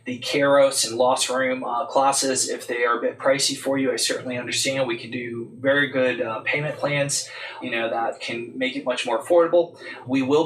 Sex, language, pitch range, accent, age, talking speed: male, English, 125-135 Hz, American, 20-39, 210 wpm